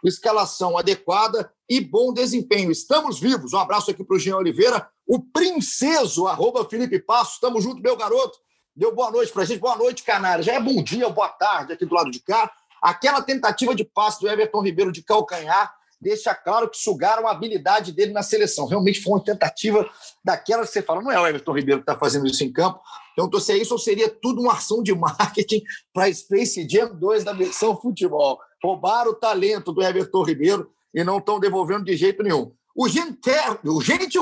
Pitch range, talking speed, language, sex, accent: 200-275 Hz, 205 wpm, Portuguese, male, Brazilian